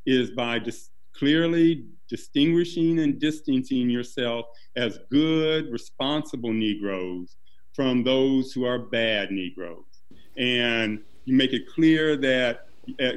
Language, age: English, 50-69